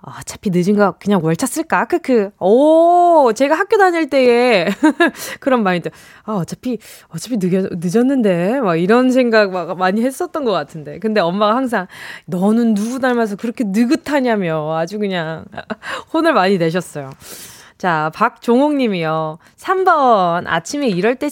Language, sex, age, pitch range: Korean, female, 20-39, 185-290 Hz